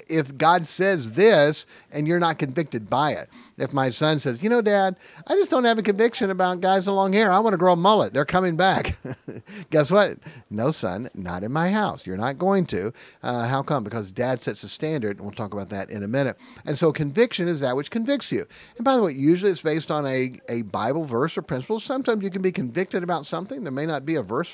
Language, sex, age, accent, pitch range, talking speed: English, male, 50-69, American, 135-185 Hz, 245 wpm